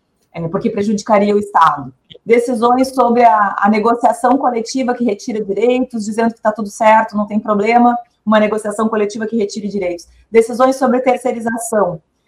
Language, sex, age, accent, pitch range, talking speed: Portuguese, female, 30-49, Brazilian, 210-260 Hz, 145 wpm